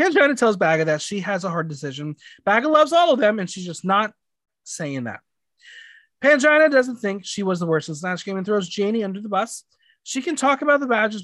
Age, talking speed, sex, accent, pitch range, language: 30-49, 230 wpm, male, American, 165-250 Hz, English